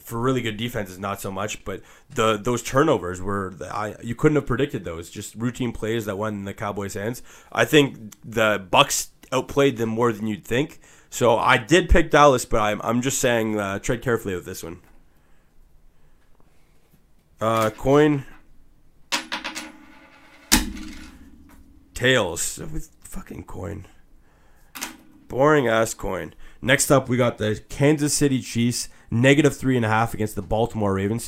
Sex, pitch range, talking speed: male, 105-130 Hz, 155 wpm